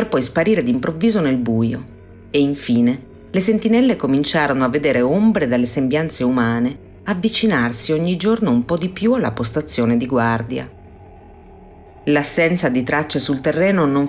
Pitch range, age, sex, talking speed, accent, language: 125-165 Hz, 40-59, female, 140 wpm, native, Italian